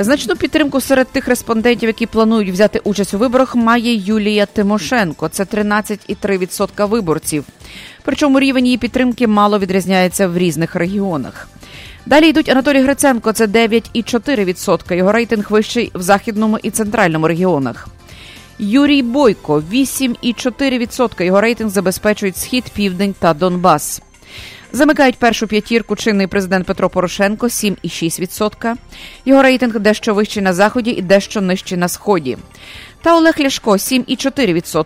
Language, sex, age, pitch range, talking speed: English, female, 30-49, 185-235 Hz, 125 wpm